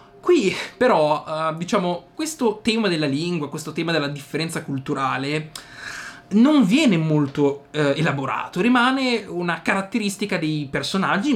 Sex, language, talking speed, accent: male, Italian, 120 wpm, native